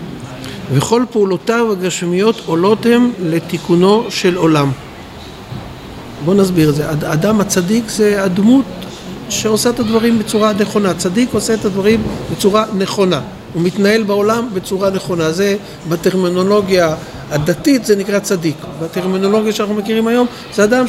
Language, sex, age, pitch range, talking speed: Hebrew, male, 50-69, 170-220 Hz, 125 wpm